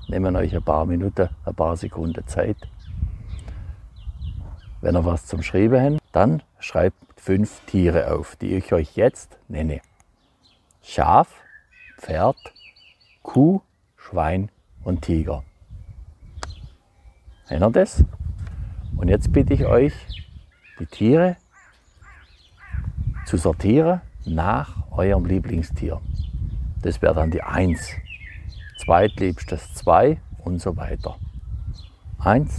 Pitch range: 80-95 Hz